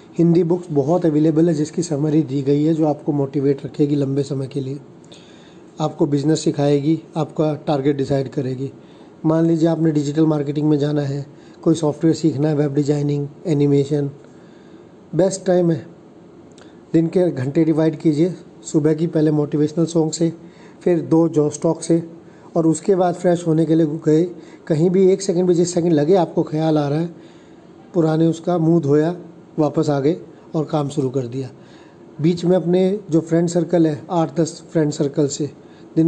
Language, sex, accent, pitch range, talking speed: Hindi, male, native, 145-170 Hz, 175 wpm